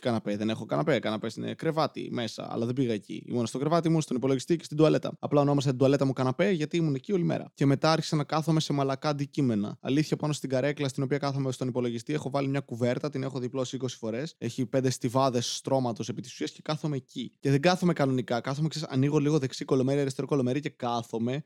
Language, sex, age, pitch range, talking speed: Greek, male, 20-39, 130-170 Hz, 225 wpm